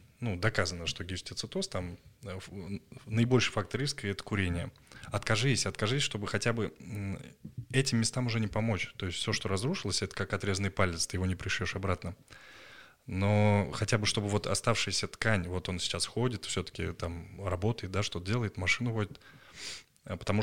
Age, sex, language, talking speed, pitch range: 20-39, male, Russian, 160 wpm, 95-110 Hz